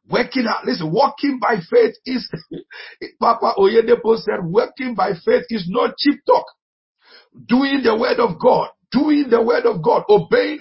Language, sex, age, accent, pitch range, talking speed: English, male, 50-69, Nigerian, 160-245 Hz, 160 wpm